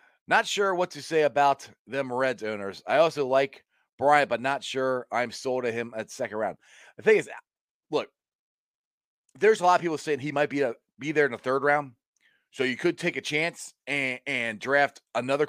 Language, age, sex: English, 30-49, male